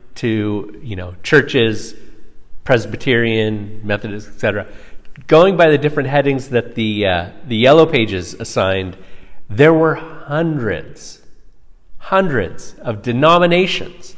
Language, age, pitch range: English, 40-59, 110-170 Hz